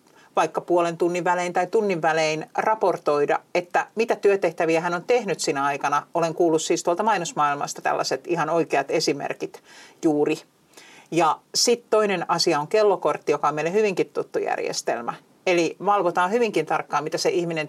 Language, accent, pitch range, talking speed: Finnish, native, 160-210 Hz, 155 wpm